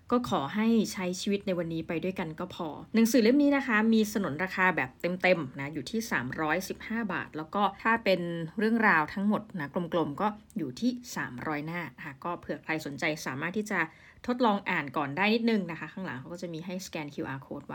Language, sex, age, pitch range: Thai, female, 20-39, 180-235 Hz